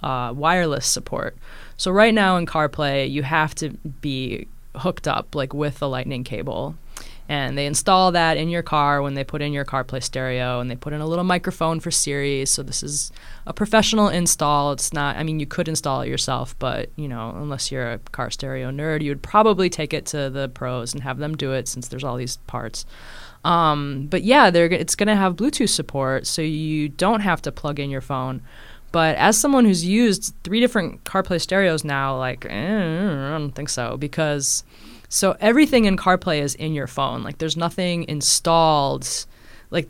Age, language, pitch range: 20-39, English, 140-180 Hz